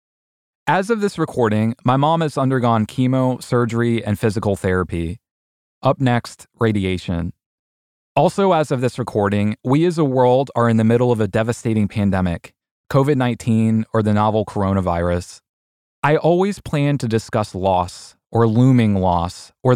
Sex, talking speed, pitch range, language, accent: male, 145 wpm, 95-135 Hz, English, American